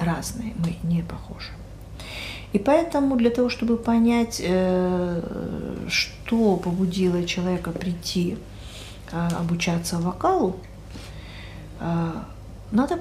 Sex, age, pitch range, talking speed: female, 40-59, 170-225 Hz, 80 wpm